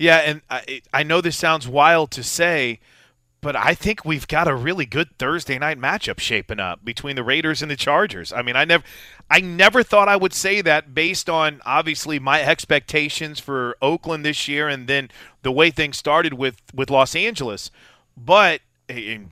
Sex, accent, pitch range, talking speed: male, American, 135-170 Hz, 190 wpm